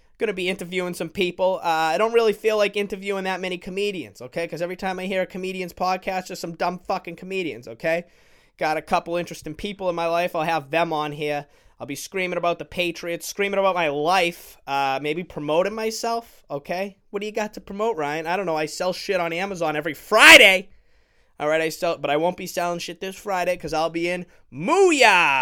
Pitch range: 145-195 Hz